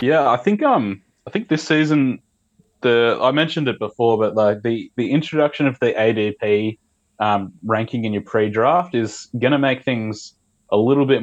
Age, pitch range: 20-39, 100-115 Hz